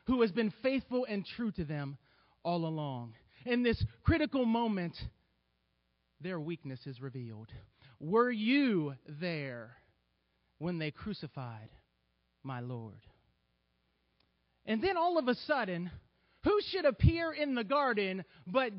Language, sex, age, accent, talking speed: English, male, 30-49, American, 125 wpm